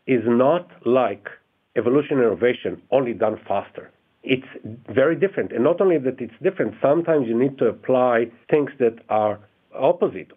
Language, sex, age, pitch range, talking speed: English, male, 50-69, 115-145 Hz, 150 wpm